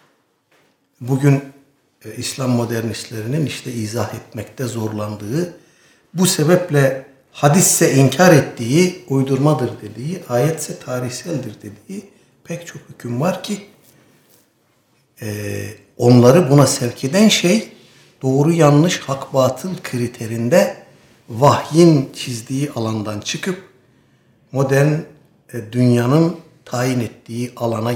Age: 60-79